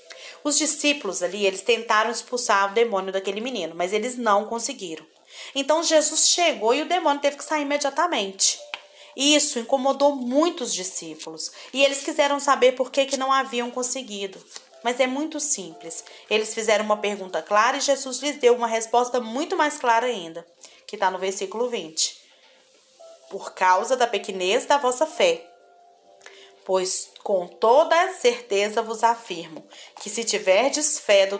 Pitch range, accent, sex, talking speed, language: 200-285 Hz, Brazilian, female, 155 wpm, Portuguese